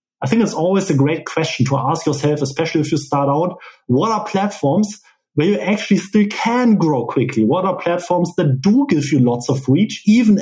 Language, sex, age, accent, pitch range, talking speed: English, male, 30-49, German, 135-185 Hz, 205 wpm